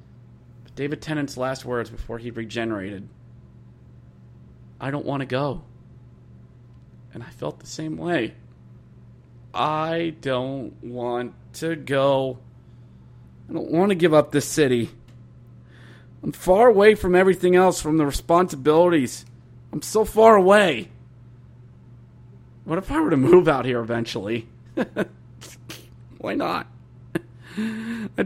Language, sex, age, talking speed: English, male, 30-49, 120 wpm